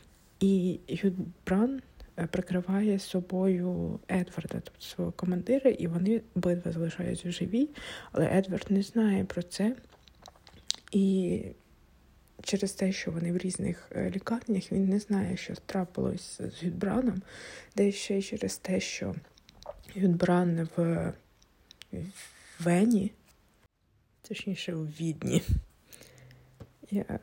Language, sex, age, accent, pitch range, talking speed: Ukrainian, female, 20-39, native, 175-205 Hz, 100 wpm